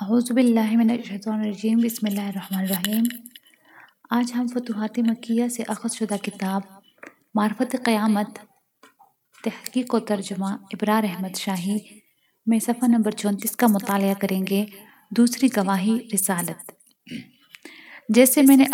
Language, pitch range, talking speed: Urdu, 205-230 Hz, 115 wpm